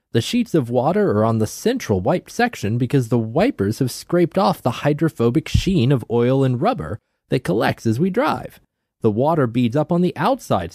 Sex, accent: male, American